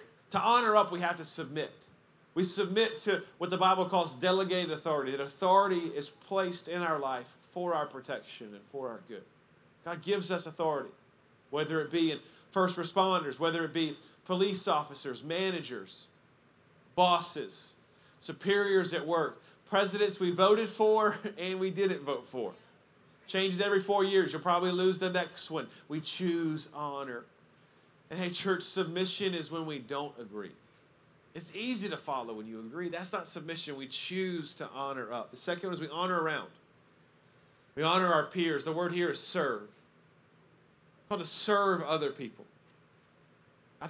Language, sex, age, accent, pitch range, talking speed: English, male, 40-59, American, 145-185 Hz, 165 wpm